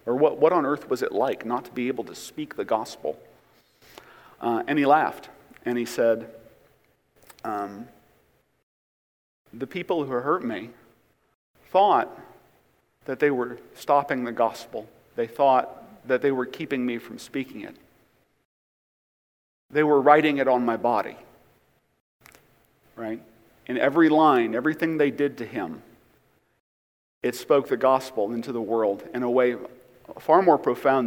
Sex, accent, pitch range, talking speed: male, American, 110-140 Hz, 145 wpm